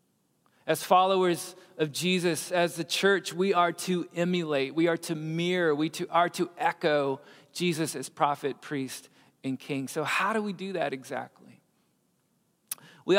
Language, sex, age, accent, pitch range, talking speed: English, male, 40-59, American, 145-180 Hz, 150 wpm